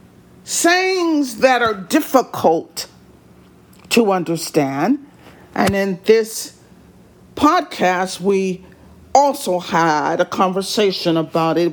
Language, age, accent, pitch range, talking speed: English, 50-69, American, 160-245 Hz, 85 wpm